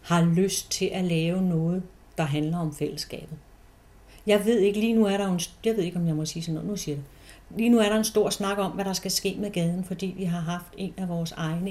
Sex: female